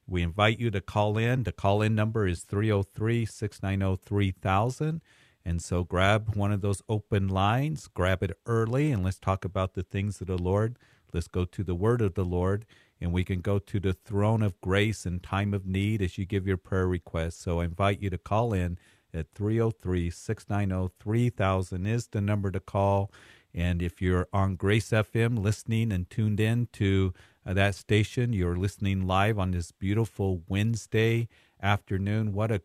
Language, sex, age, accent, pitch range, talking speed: English, male, 50-69, American, 95-110 Hz, 175 wpm